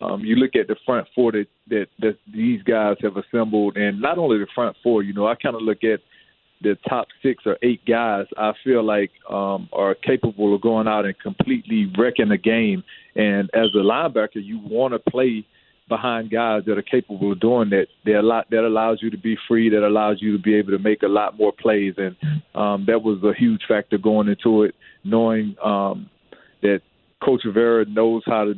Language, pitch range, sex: English, 105-120 Hz, male